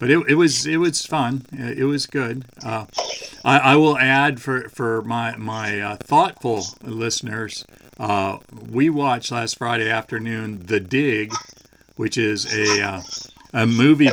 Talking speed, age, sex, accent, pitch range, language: 155 wpm, 50-69, male, American, 105-125 Hz, English